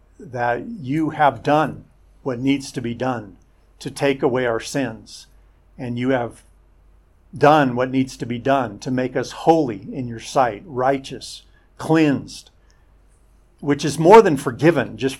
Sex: male